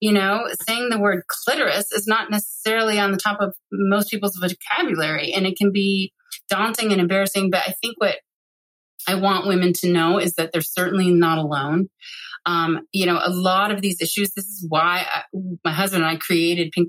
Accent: American